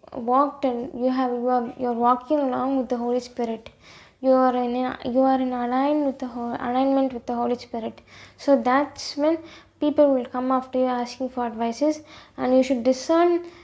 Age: 20-39